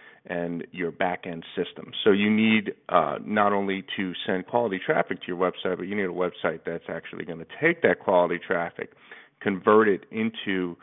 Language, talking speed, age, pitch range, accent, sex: English, 190 wpm, 40-59, 90-105 Hz, American, male